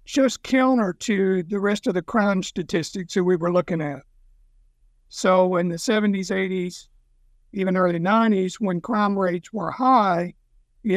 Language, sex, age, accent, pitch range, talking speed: English, male, 60-79, American, 170-215 Hz, 155 wpm